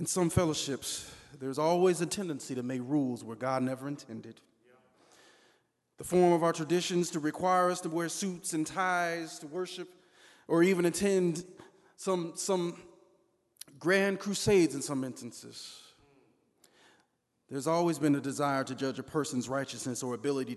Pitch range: 130-170 Hz